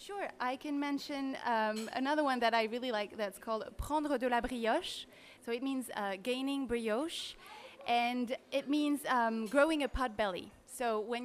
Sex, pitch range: female, 210-265 Hz